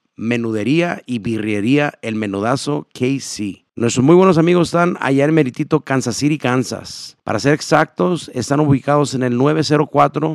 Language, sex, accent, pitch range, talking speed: English, male, Mexican, 115-150 Hz, 145 wpm